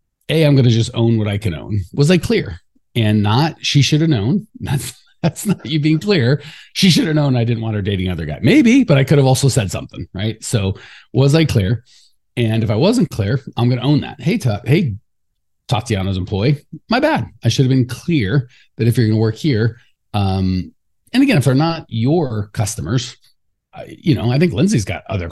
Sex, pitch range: male, 115-165 Hz